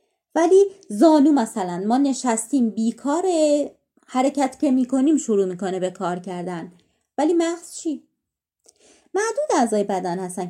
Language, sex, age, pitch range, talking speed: Persian, female, 30-49, 205-310 Hz, 120 wpm